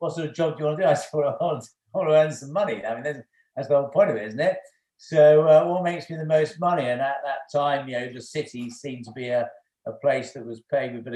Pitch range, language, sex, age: 115-140 Hz, English, male, 50-69